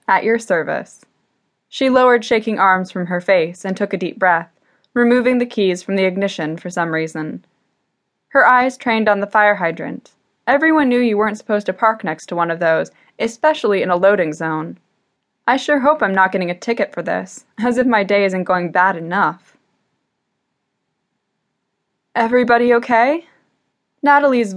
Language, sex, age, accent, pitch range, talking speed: English, female, 10-29, American, 185-235 Hz, 170 wpm